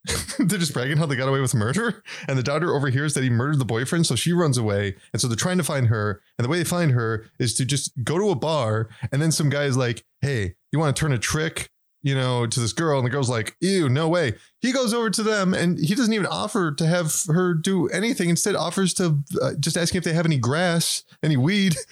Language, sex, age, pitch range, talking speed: English, male, 20-39, 130-185 Hz, 260 wpm